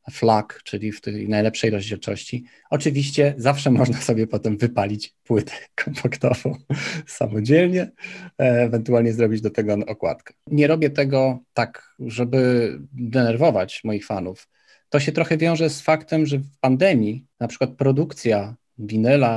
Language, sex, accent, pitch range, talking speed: Polish, male, native, 115-140 Hz, 125 wpm